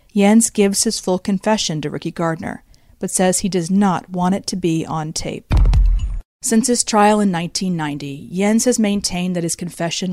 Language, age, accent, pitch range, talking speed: English, 40-59, American, 165-205 Hz, 180 wpm